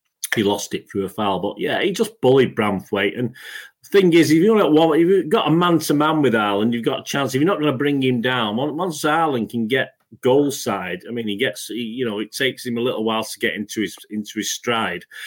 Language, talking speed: English, 255 wpm